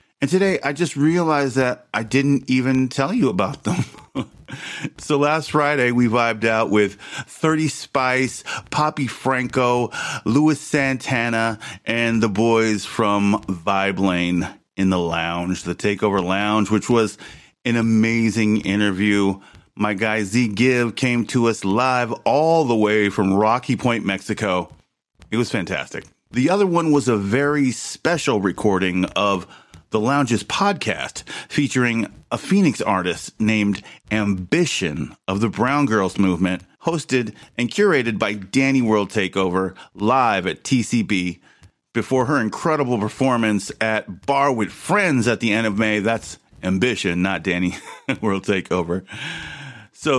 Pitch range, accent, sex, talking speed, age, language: 100-135 Hz, American, male, 135 wpm, 40-59, English